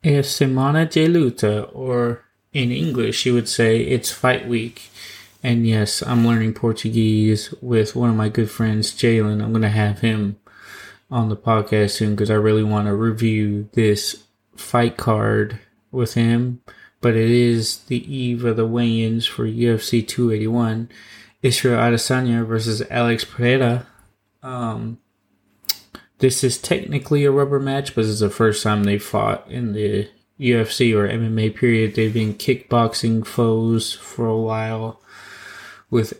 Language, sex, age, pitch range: English, male, 20-39, 105-120 Hz